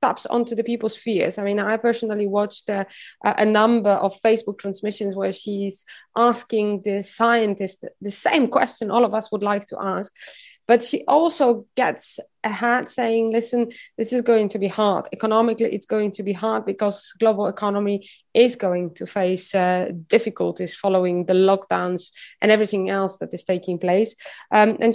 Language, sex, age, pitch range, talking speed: English, female, 20-39, 205-245 Hz, 170 wpm